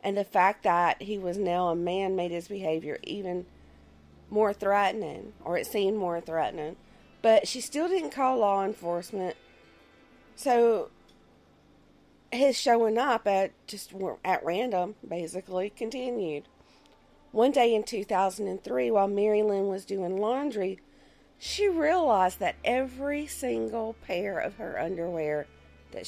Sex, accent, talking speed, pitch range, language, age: female, American, 130 wpm, 160-225 Hz, English, 40-59